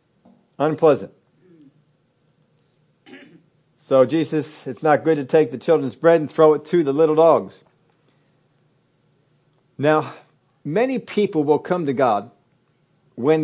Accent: American